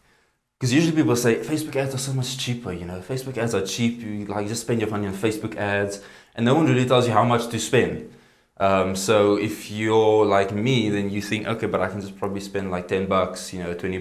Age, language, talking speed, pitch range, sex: 20-39, English, 250 wpm, 100-115 Hz, male